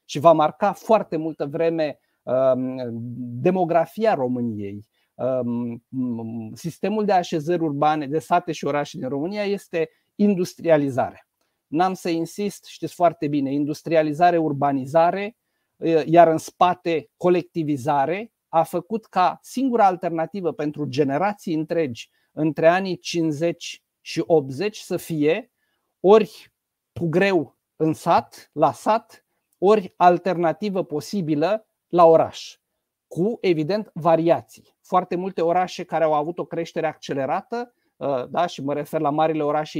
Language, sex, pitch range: Romanian, male, 145-175 Hz